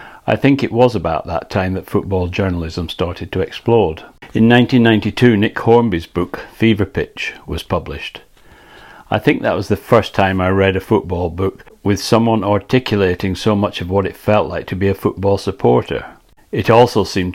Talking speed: 180 wpm